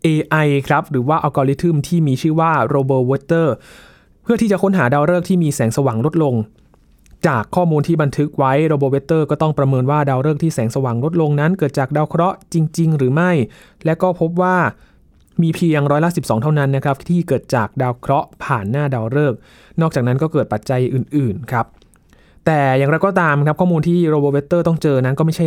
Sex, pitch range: male, 135-165 Hz